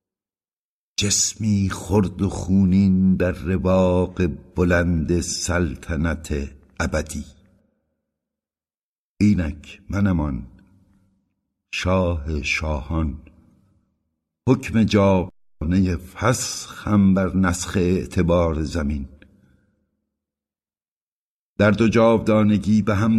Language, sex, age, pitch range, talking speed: Persian, male, 60-79, 80-105 Hz, 65 wpm